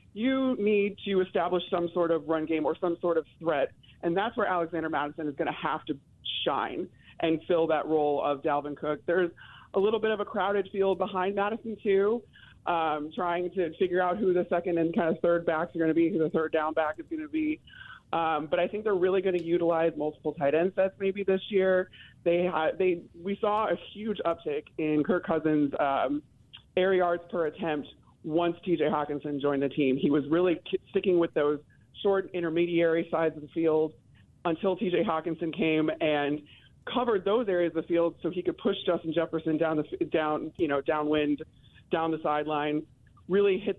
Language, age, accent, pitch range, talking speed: English, 30-49, American, 150-180 Hz, 200 wpm